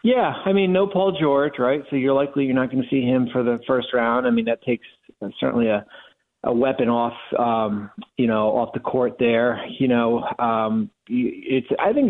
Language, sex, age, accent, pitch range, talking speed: English, male, 40-59, American, 110-130 Hz, 210 wpm